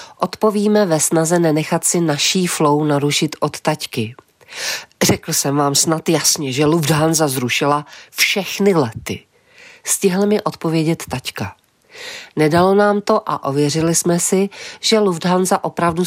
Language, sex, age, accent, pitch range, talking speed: Czech, female, 40-59, native, 145-180 Hz, 125 wpm